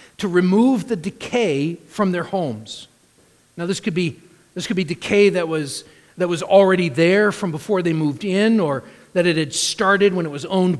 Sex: male